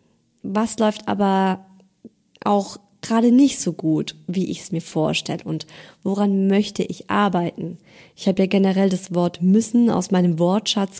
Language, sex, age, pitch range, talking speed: German, female, 20-39, 180-225 Hz, 155 wpm